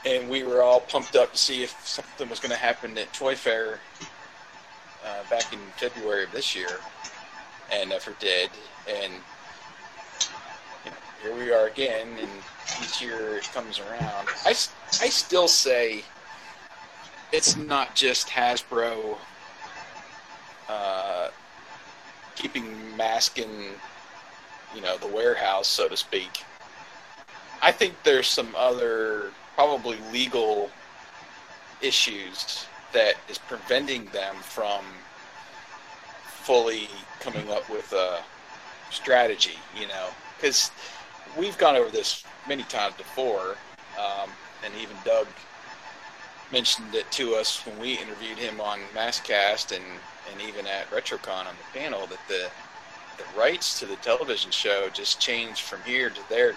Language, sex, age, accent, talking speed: English, male, 40-59, American, 135 wpm